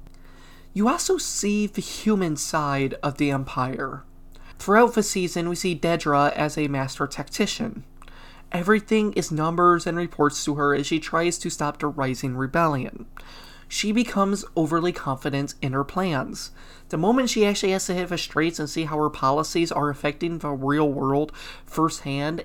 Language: English